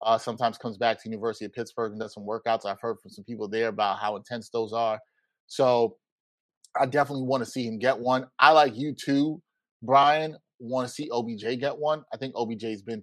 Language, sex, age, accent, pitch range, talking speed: English, male, 30-49, American, 115-150 Hz, 220 wpm